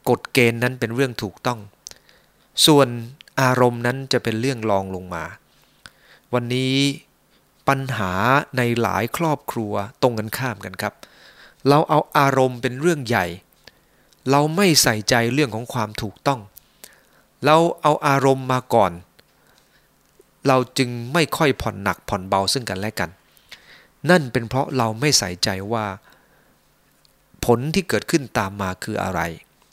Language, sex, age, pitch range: English, male, 20-39, 105-135 Hz